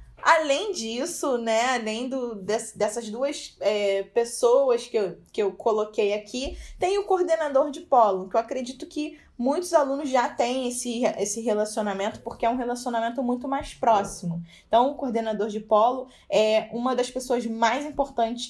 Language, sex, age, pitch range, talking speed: Portuguese, female, 10-29, 215-260 Hz, 160 wpm